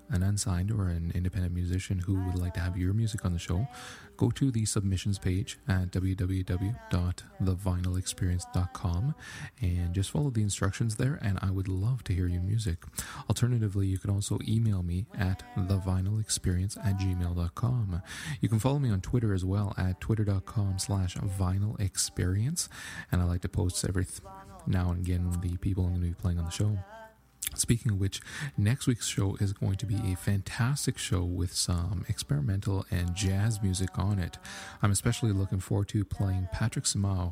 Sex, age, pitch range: male, 30-49, 90-110 Hz